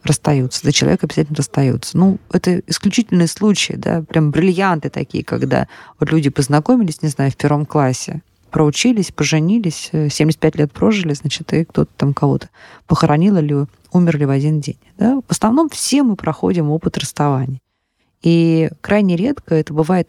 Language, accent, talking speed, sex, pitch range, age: Russian, native, 150 wpm, female, 150-200 Hz, 20-39